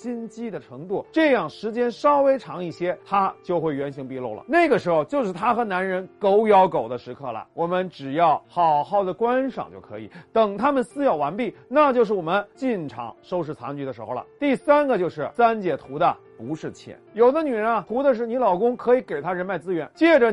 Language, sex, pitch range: Chinese, male, 175-260 Hz